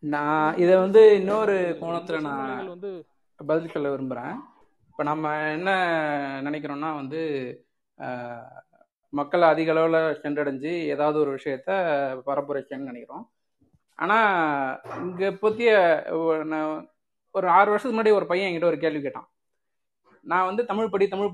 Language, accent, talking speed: Tamil, native, 110 wpm